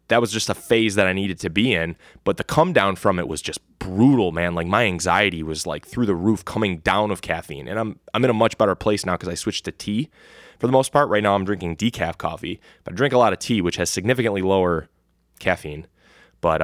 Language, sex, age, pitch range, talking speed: English, male, 20-39, 90-115 Hz, 255 wpm